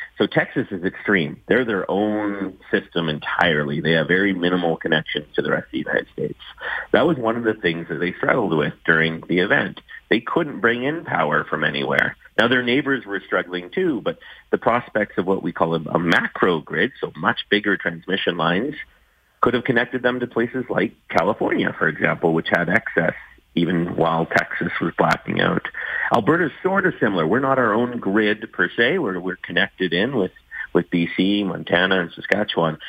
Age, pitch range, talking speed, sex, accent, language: 40-59, 85-110 Hz, 185 wpm, male, American, English